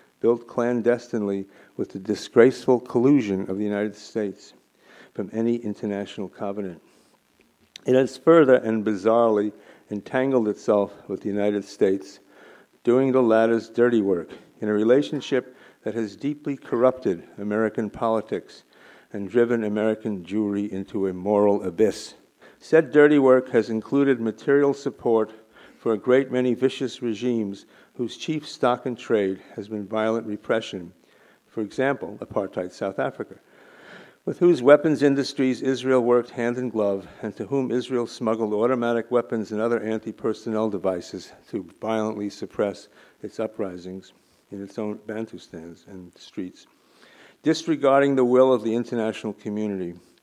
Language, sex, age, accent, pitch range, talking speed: English, male, 50-69, American, 105-125 Hz, 135 wpm